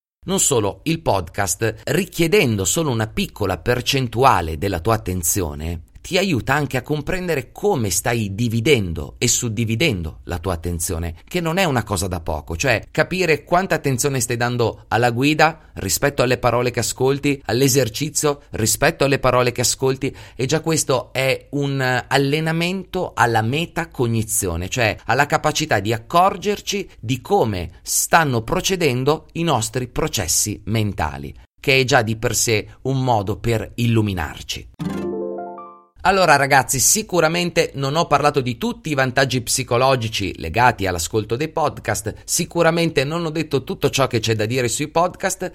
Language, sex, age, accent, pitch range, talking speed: Italian, male, 30-49, native, 110-150 Hz, 145 wpm